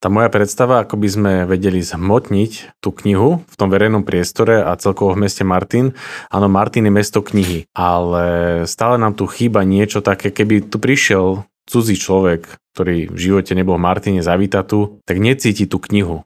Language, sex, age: Slovak, male, 30-49